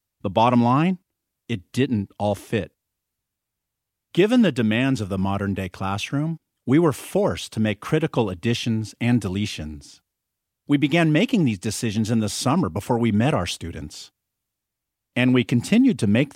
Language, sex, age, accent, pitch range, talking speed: English, male, 50-69, American, 100-130 Hz, 150 wpm